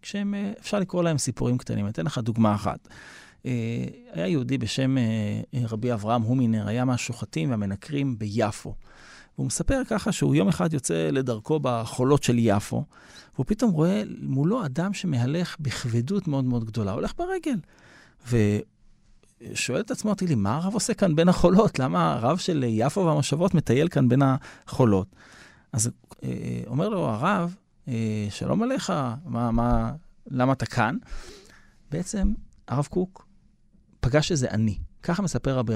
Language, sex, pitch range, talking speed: Hebrew, male, 115-170 Hz, 140 wpm